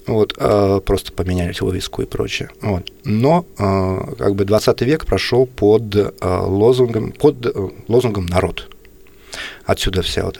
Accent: native